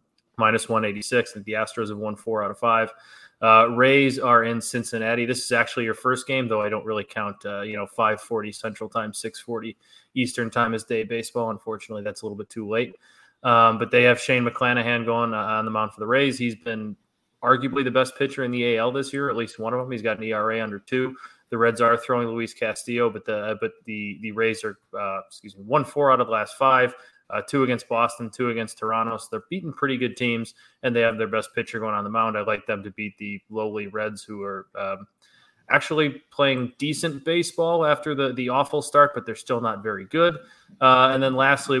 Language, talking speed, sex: English, 230 wpm, male